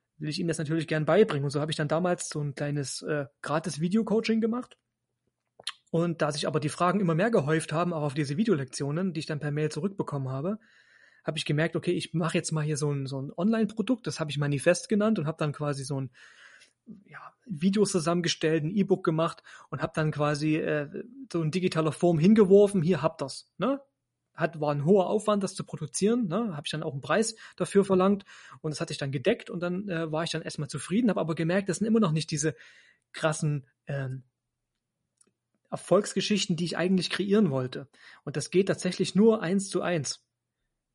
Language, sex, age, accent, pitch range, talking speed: German, male, 30-49, German, 150-195 Hz, 205 wpm